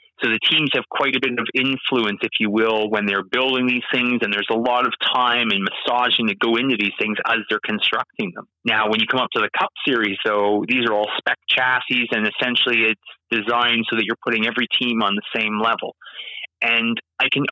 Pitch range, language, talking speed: 110-135 Hz, English, 225 wpm